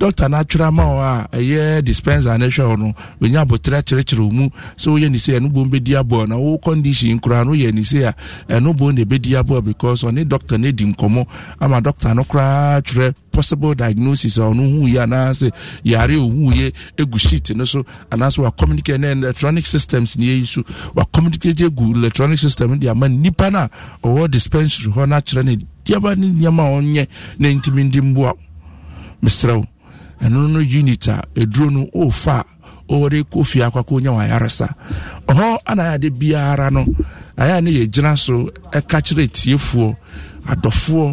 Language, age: English, 50-69